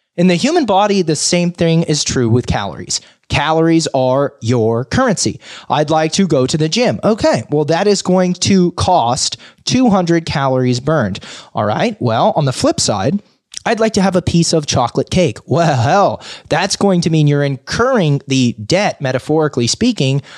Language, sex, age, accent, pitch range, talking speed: English, male, 20-39, American, 125-180 Hz, 175 wpm